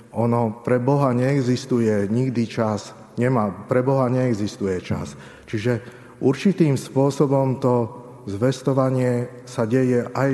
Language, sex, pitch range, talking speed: Slovak, male, 105-125 Hz, 110 wpm